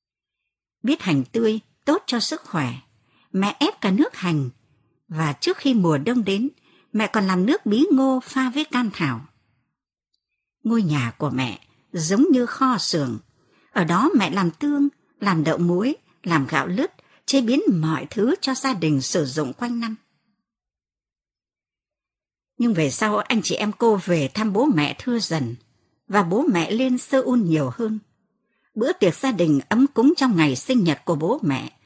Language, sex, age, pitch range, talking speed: Vietnamese, male, 60-79, 160-260 Hz, 175 wpm